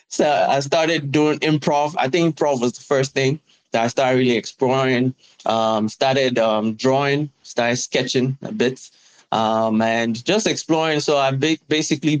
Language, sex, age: English, male, 20-39